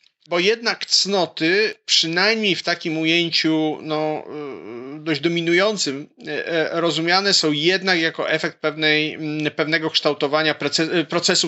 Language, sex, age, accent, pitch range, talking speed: Polish, male, 40-59, native, 150-185 Hz, 90 wpm